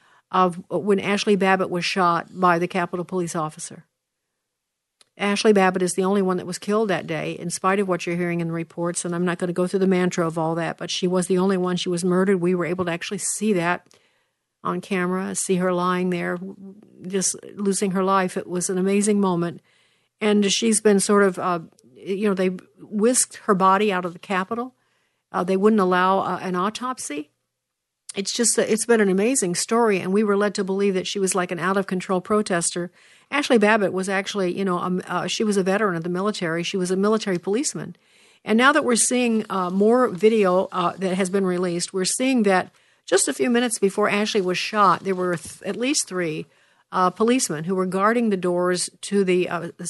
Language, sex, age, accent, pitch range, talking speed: English, female, 50-69, American, 180-205 Hz, 210 wpm